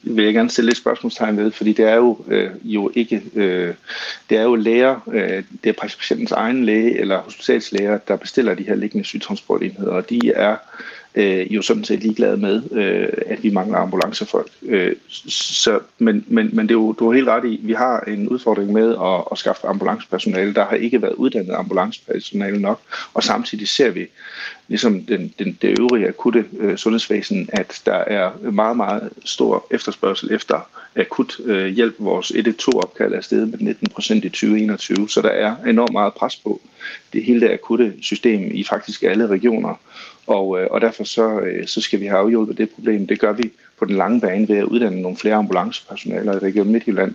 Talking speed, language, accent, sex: 185 wpm, Danish, native, male